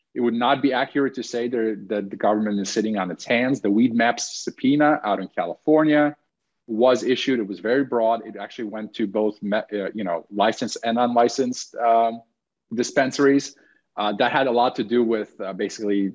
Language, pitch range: English, 100-130 Hz